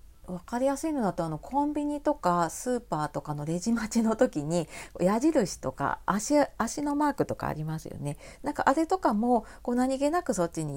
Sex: female